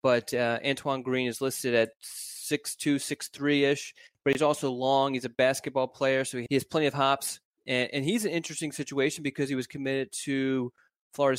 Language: English